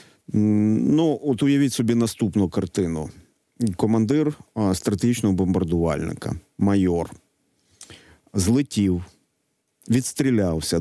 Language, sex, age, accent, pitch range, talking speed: Ukrainian, male, 40-59, native, 95-120 Hz, 70 wpm